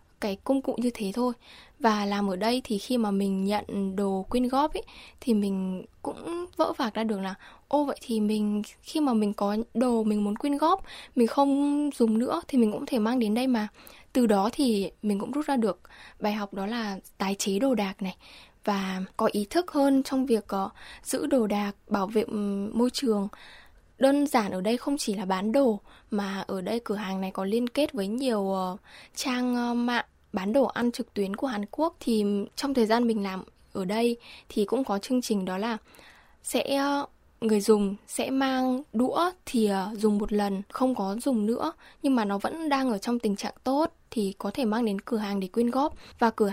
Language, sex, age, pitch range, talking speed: Vietnamese, female, 10-29, 205-260 Hz, 210 wpm